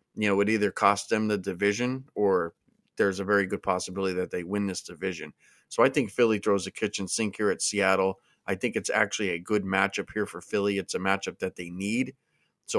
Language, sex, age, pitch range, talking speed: English, male, 30-49, 95-105 Hz, 220 wpm